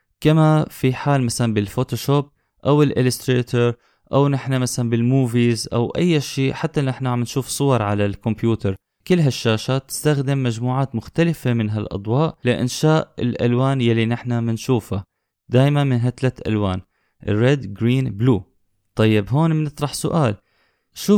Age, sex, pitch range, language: 20-39, male, 110-135 Hz, Arabic